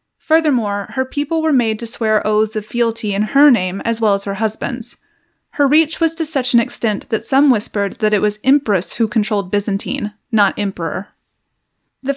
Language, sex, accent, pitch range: English, female, American, 205-260 Hz